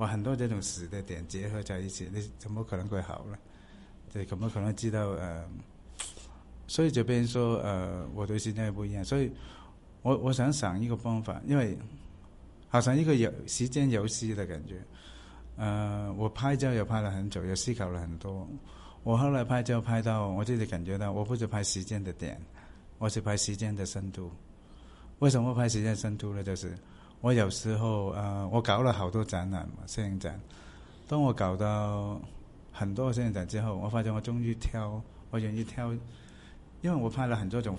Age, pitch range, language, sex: 60-79, 95-115 Hz, Chinese, male